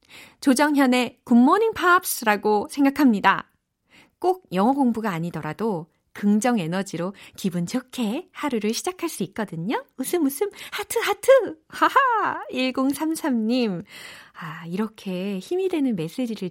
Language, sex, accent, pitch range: Korean, female, native, 180-275 Hz